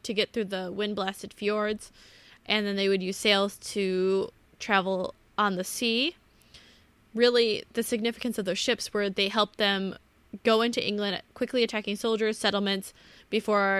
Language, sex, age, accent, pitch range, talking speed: English, female, 10-29, American, 195-220 Hz, 150 wpm